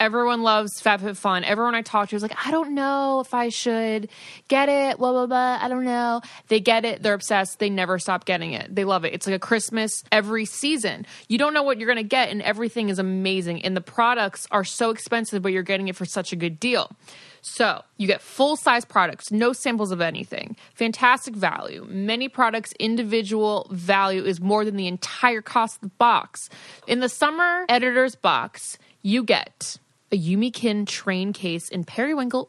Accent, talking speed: American, 190 wpm